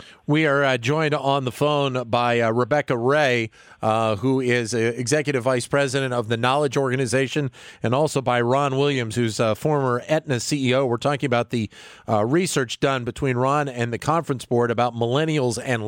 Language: English